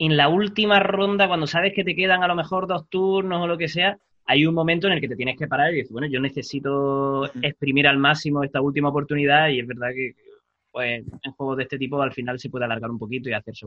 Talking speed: 255 wpm